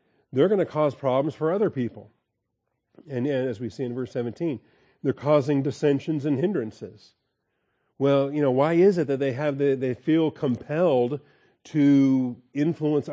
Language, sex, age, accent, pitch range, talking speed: English, male, 40-59, American, 120-140 Hz, 155 wpm